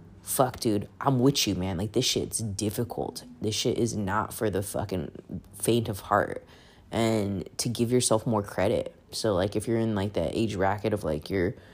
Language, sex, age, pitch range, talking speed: English, female, 20-39, 100-115 Hz, 195 wpm